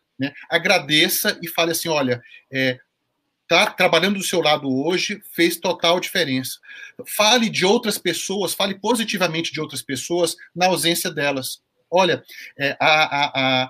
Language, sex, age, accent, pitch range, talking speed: Portuguese, male, 40-59, Brazilian, 145-195 Hz, 145 wpm